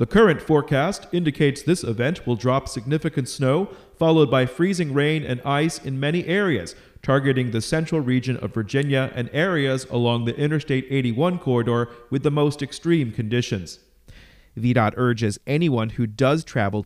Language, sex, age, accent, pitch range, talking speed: English, male, 40-59, American, 115-150 Hz, 155 wpm